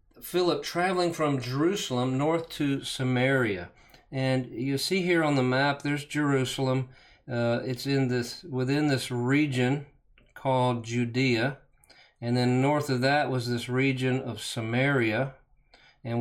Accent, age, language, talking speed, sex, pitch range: American, 40-59, English, 135 wpm, male, 125-150 Hz